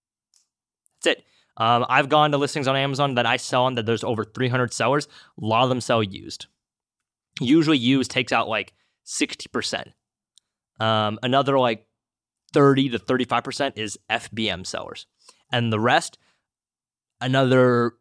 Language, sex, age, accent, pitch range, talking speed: English, male, 20-39, American, 110-135 Hz, 140 wpm